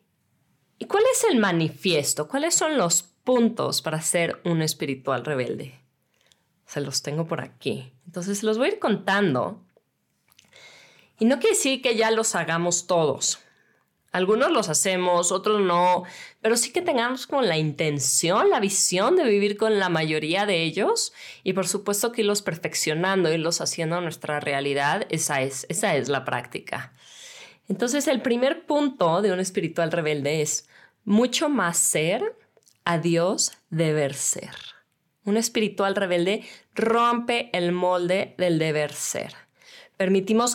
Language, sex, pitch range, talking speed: Spanish, female, 165-220 Hz, 140 wpm